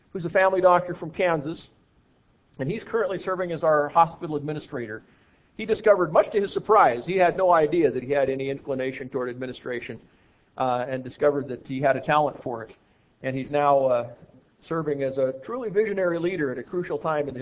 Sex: male